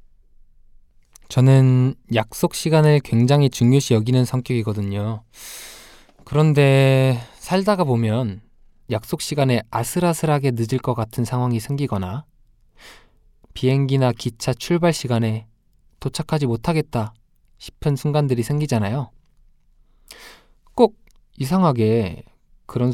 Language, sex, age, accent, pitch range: Korean, male, 20-39, native, 110-145 Hz